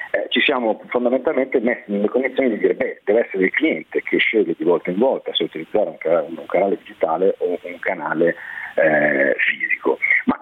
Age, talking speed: 40-59, 175 wpm